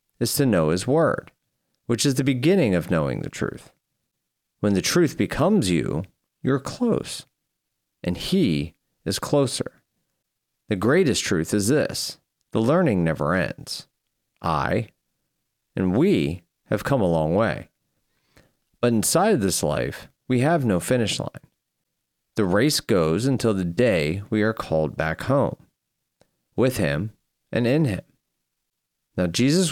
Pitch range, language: 90-145 Hz, English